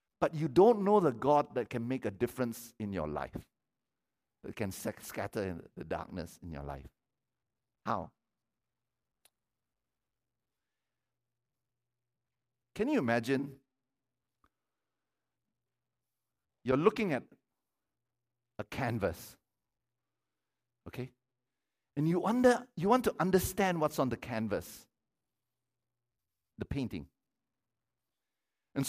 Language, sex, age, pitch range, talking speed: English, male, 60-79, 120-185 Hz, 100 wpm